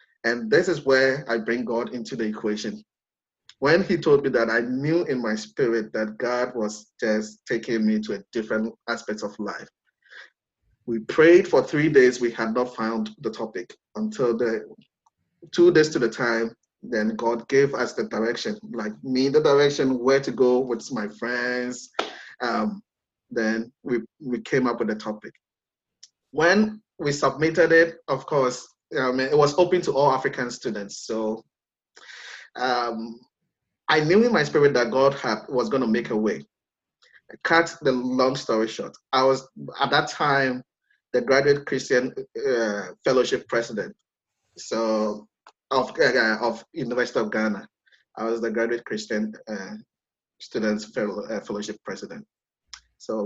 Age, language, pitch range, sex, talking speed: 20-39, English, 115-145 Hz, male, 160 wpm